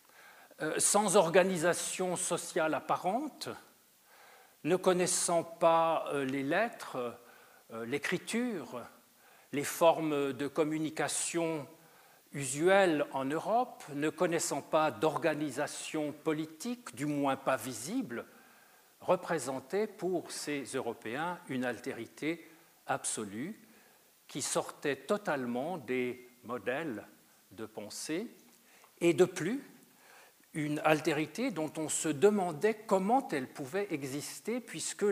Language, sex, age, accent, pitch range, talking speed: French, male, 50-69, French, 145-195 Hz, 95 wpm